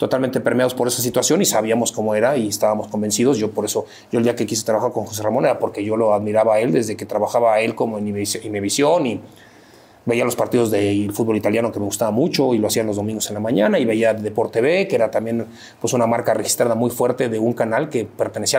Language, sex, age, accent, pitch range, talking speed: Spanish, male, 30-49, Mexican, 110-130 Hz, 260 wpm